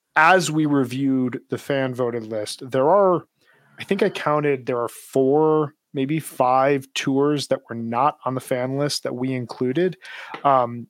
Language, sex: English, male